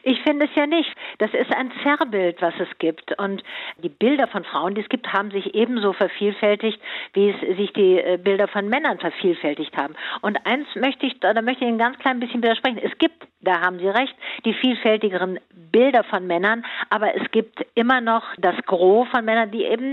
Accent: German